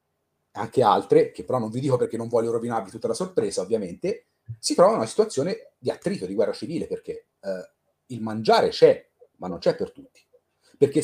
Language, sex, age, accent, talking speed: Italian, male, 40-59, native, 195 wpm